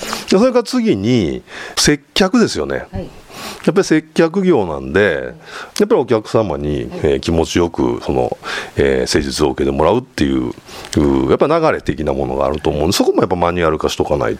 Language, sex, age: Japanese, male, 40-59